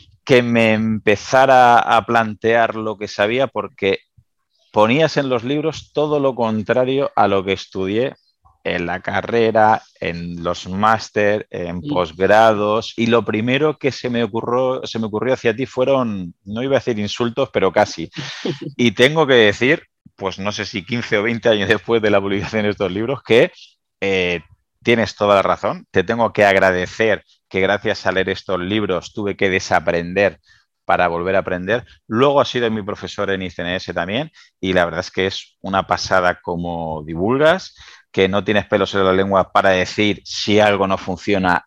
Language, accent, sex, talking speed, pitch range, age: Spanish, Spanish, male, 175 wpm, 95-115 Hz, 30-49